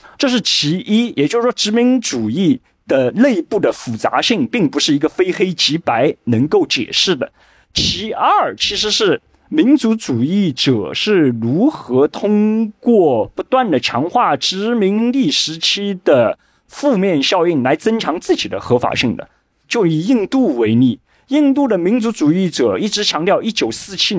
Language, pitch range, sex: Chinese, 145-240 Hz, male